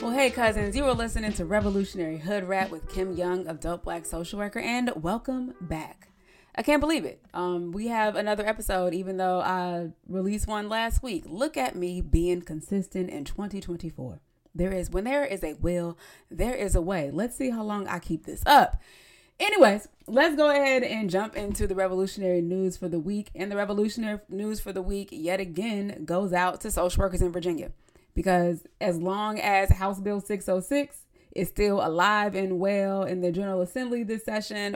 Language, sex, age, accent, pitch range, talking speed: English, female, 20-39, American, 175-205 Hz, 190 wpm